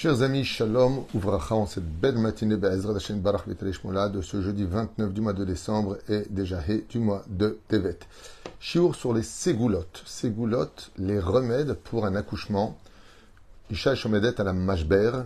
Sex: male